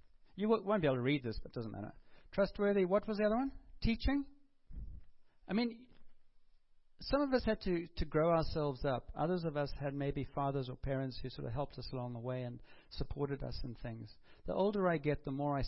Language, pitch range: English, 130-180 Hz